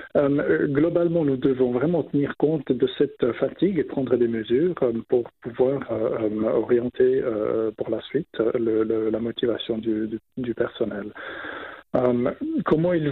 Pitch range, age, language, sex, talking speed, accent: 115-145 Hz, 50-69, French, male, 115 wpm, French